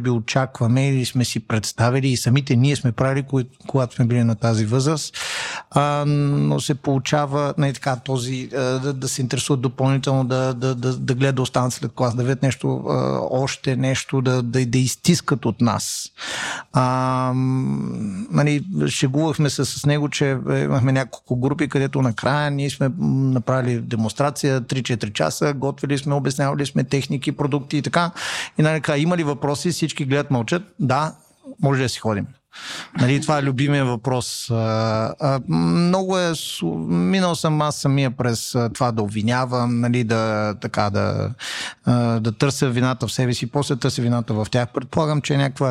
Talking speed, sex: 155 wpm, male